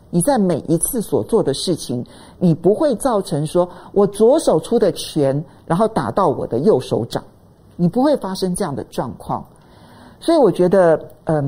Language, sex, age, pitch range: Chinese, male, 50-69, 150-230 Hz